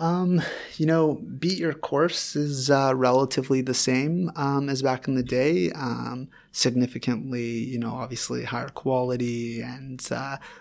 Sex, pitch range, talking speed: male, 115-125 Hz, 145 wpm